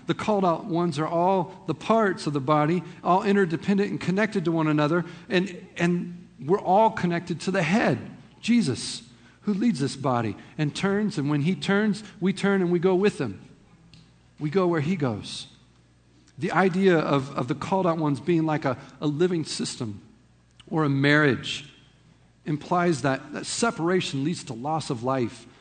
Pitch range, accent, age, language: 125-175 Hz, American, 50-69, English